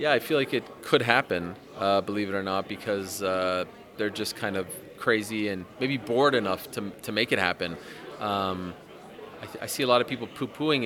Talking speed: 210 wpm